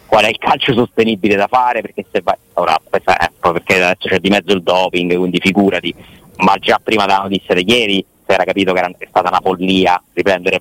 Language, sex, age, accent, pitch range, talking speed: Italian, male, 30-49, native, 95-115 Hz, 215 wpm